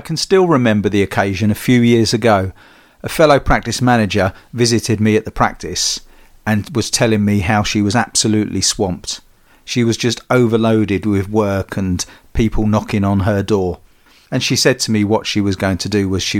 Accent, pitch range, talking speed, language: British, 100-120 Hz, 195 wpm, English